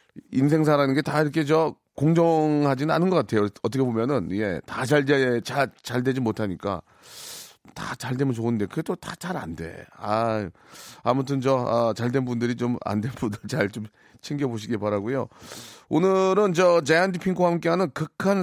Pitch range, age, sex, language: 115-150 Hz, 30-49, male, Korean